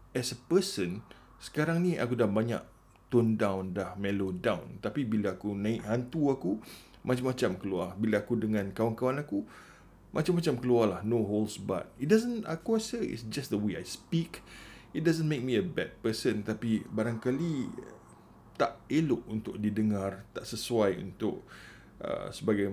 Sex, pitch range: male, 100-125 Hz